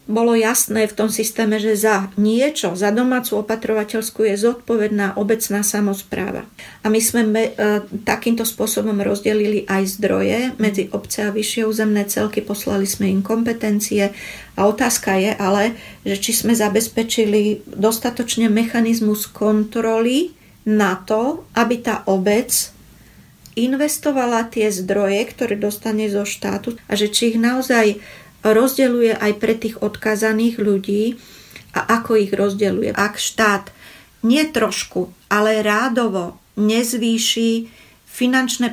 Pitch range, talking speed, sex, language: 205-230 Hz, 120 wpm, female, Slovak